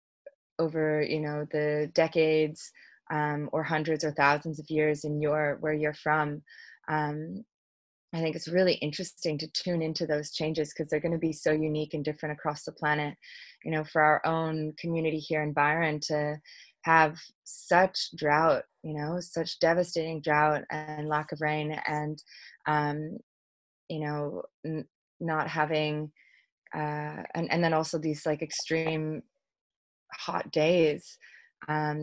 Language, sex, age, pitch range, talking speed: English, female, 20-39, 150-165 Hz, 150 wpm